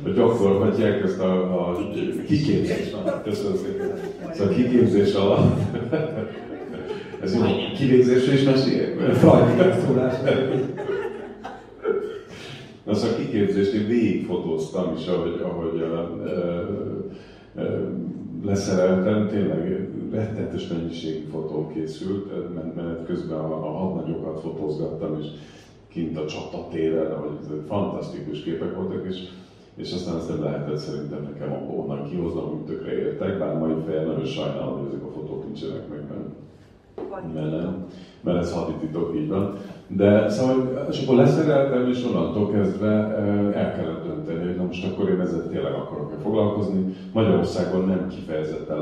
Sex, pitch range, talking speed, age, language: male, 80-105 Hz, 130 wpm, 40-59, Hungarian